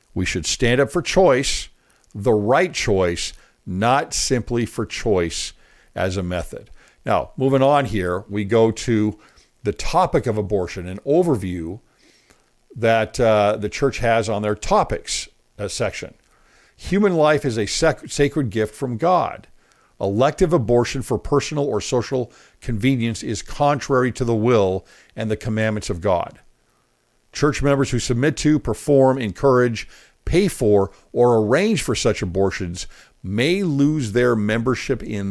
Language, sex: English, male